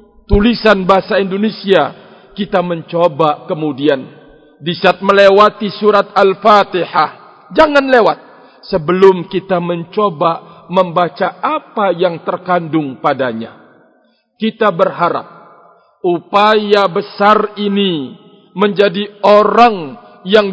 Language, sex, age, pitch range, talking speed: Indonesian, male, 50-69, 170-210 Hz, 85 wpm